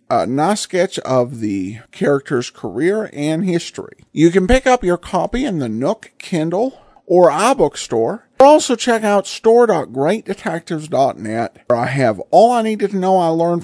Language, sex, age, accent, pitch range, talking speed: English, male, 50-69, American, 135-205 Hz, 160 wpm